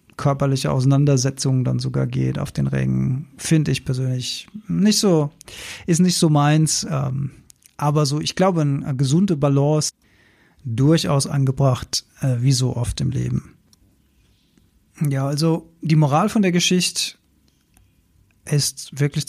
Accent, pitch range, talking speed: German, 135-160 Hz, 125 wpm